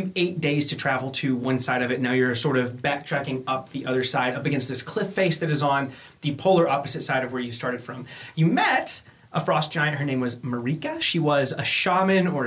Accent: American